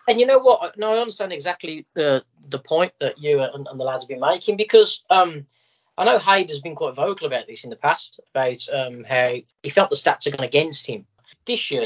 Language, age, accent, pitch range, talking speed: English, 30-49, British, 135-195 Hz, 235 wpm